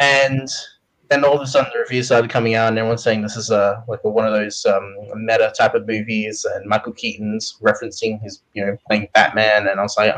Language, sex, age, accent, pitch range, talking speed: English, male, 20-39, Australian, 110-145 Hz, 230 wpm